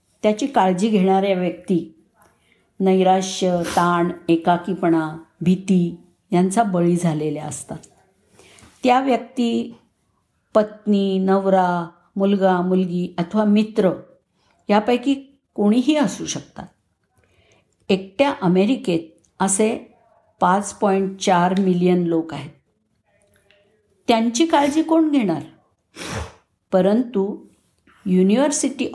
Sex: female